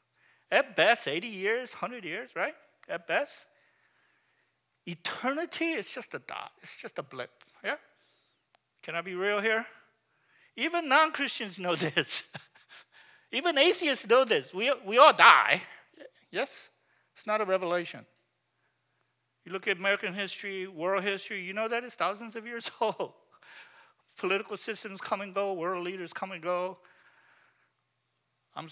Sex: male